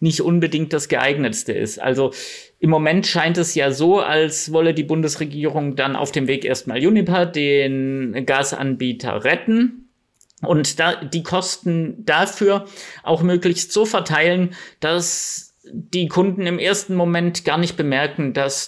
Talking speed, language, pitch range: 140 wpm, German, 130-175 Hz